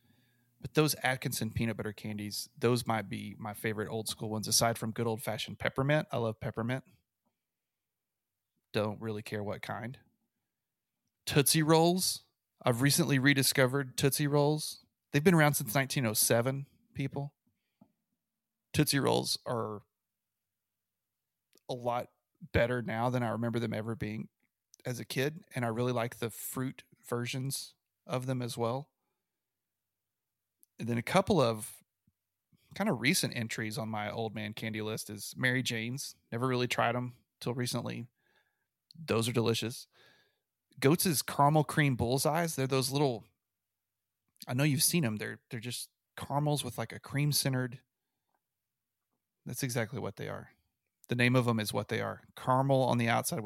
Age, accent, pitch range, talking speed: 30-49, American, 110-135 Hz, 150 wpm